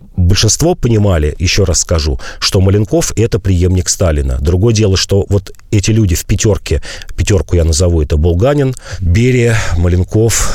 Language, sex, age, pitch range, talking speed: Russian, male, 40-59, 85-110 Hz, 140 wpm